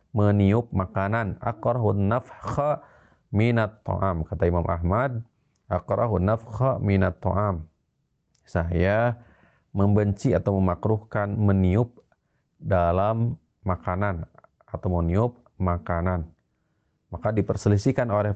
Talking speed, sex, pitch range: 85 wpm, male, 95-120 Hz